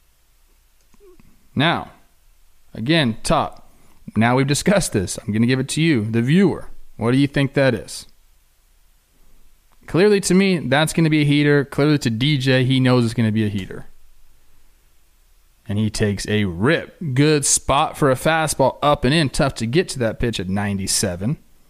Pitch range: 90-145 Hz